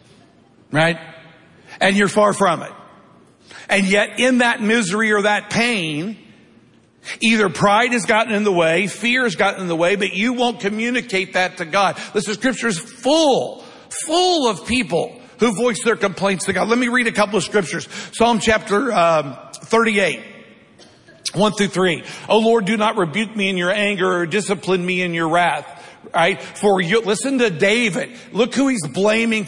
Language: English